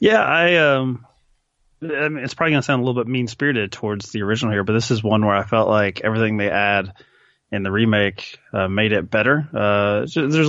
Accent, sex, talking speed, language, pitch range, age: American, male, 210 wpm, English, 100-125 Hz, 20-39